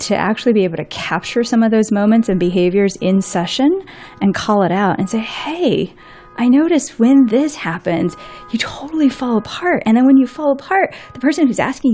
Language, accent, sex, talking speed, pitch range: English, American, female, 200 wpm, 190-260 Hz